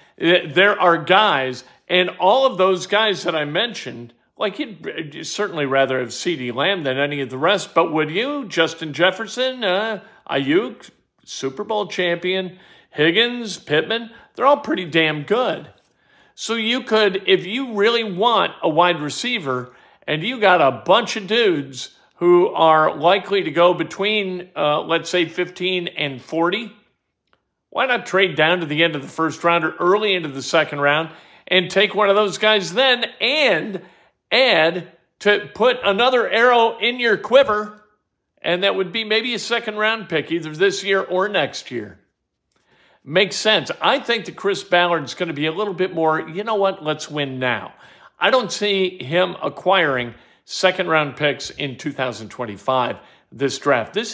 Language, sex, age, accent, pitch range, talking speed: English, male, 50-69, American, 160-215 Hz, 165 wpm